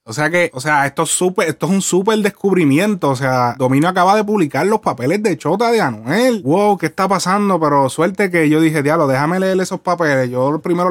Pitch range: 150-190 Hz